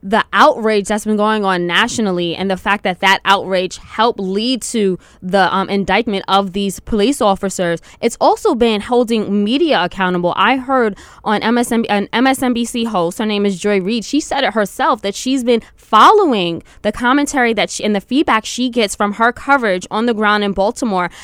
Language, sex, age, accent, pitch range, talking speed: English, female, 10-29, American, 195-240 Hz, 185 wpm